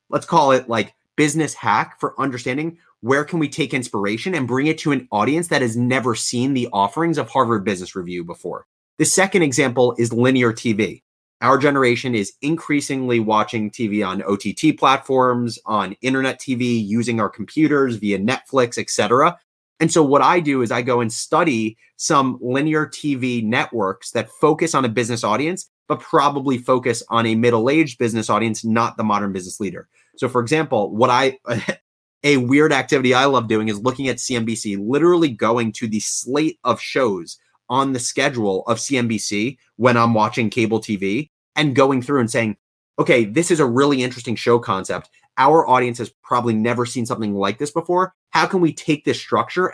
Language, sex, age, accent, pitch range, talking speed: English, male, 30-49, American, 115-145 Hz, 180 wpm